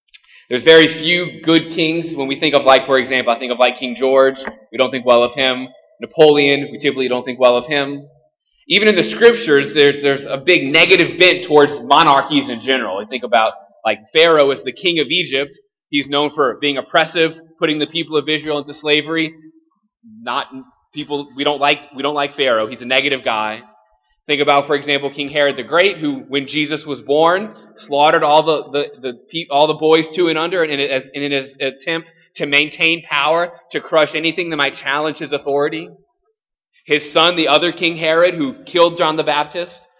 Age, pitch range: 20-39, 140-165 Hz